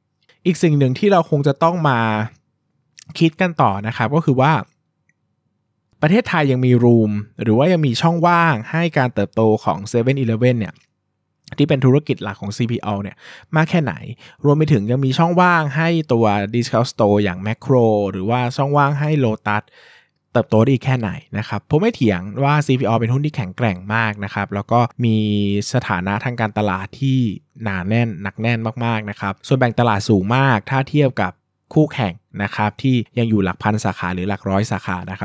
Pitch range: 105-140 Hz